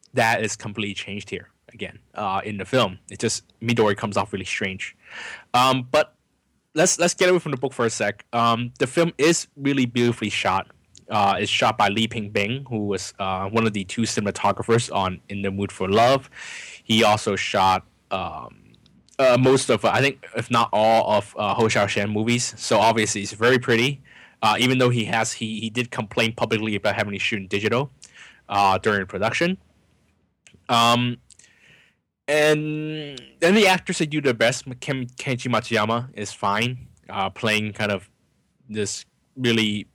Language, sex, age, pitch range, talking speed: English, male, 20-39, 105-125 Hz, 180 wpm